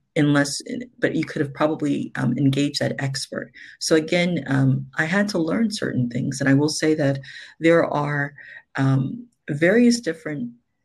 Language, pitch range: English, 135-155 Hz